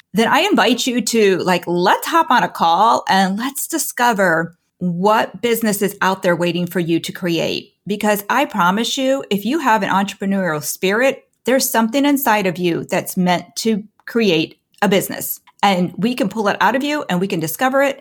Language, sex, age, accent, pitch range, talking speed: English, female, 40-59, American, 185-250 Hz, 195 wpm